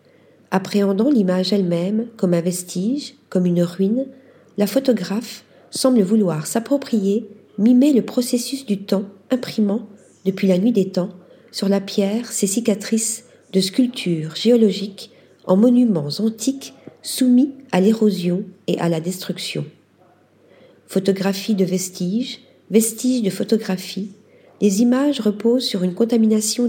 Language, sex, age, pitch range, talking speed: French, female, 50-69, 190-235 Hz, 125 wpm